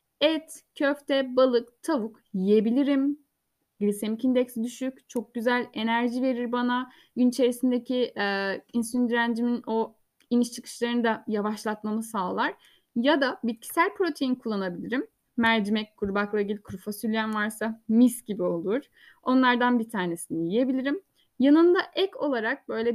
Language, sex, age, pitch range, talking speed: Turkish, female, 10-29, 215-270 Hz, 120 wpm